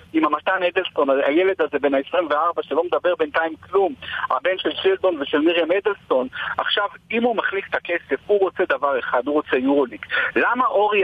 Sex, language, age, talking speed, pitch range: male, Hebrew, 50-69, 175 wpm, 180-280 Hz